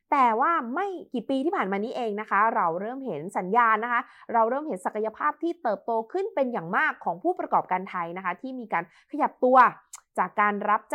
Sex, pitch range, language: female, 200-265 Hz, Thai